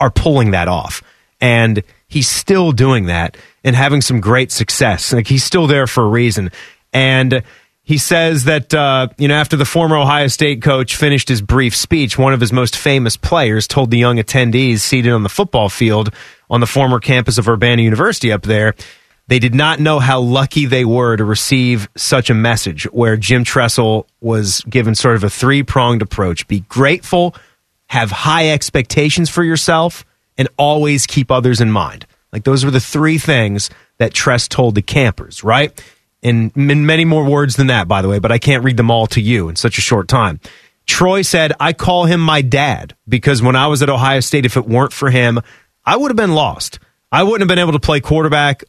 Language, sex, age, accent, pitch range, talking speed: English, male, 30-49, American, 115-145 Hz, 200 wpm